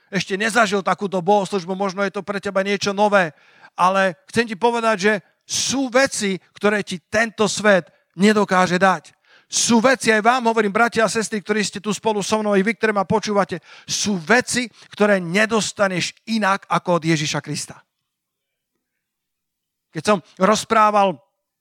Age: 50-69